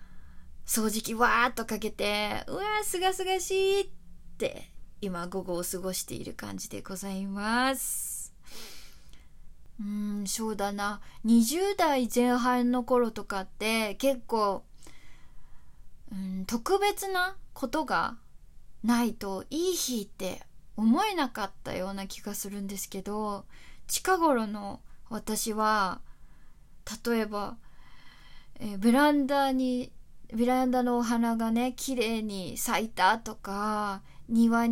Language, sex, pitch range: Japanese, female, 205-265 Hz